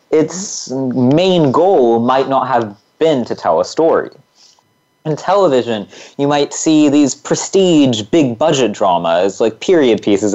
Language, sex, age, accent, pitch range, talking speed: English, male, 20-39, American, 115-155 Hz, 135 wpm